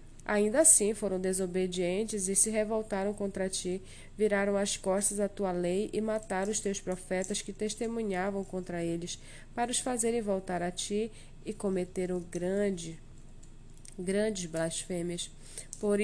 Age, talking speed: 20-39, 135 wpm